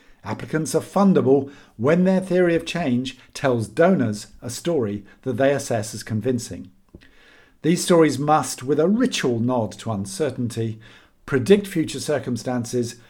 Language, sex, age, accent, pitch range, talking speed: English, male, 50-69, British, 115-160 Hz, 135 wpm